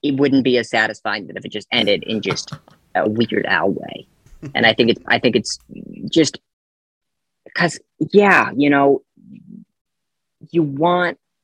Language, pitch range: English, 110-155 Hz